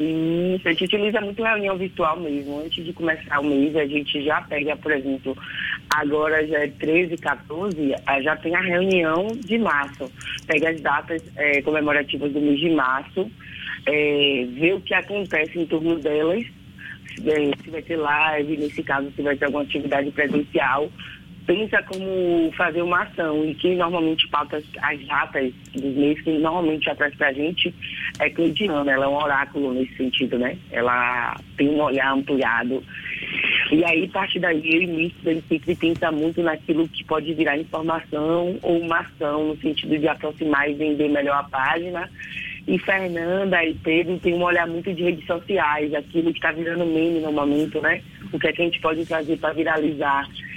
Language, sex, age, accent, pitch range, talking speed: Portuguese, female, 20-39, Brazilian, 145-170 Hz, 175 wpm